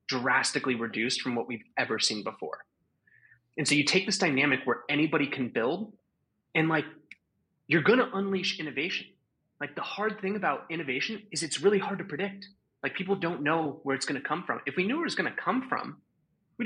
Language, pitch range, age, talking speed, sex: English, 130-185 Hz, 30-49, 195 wpm, male